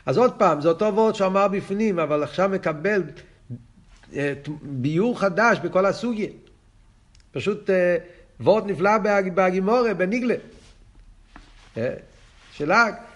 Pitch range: 145-205 Hz